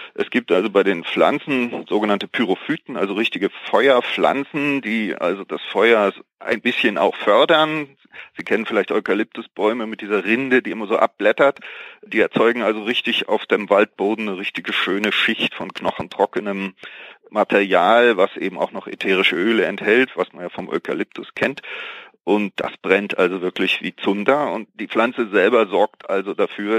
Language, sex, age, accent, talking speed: English, male, 40-59, German, 160 wpm